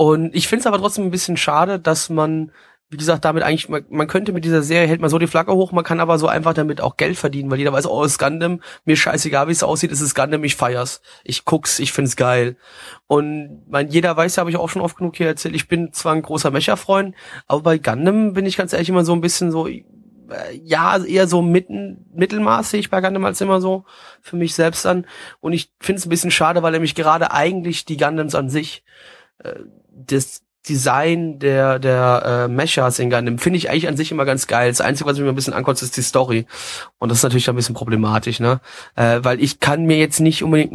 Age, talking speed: 30-49, 240 wpm